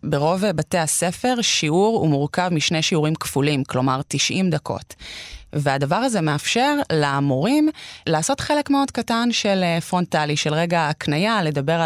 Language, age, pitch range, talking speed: Hebrew, 20-39, 150-205 Hz, 130 wpm